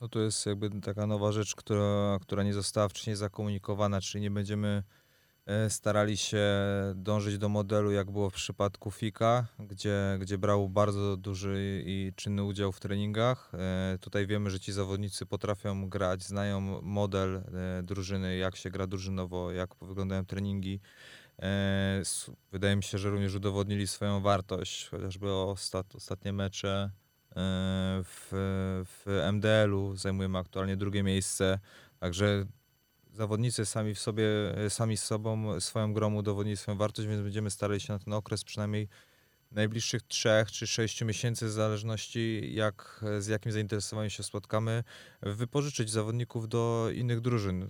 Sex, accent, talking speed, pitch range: male, native, 135 wpm, 100-110 Hz